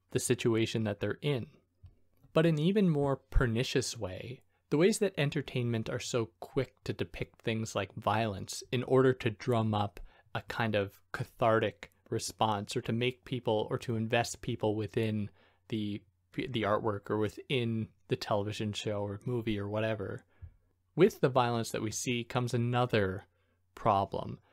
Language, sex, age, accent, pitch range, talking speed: English, male, 20-39, American, 105-130 Hz, 155 wpm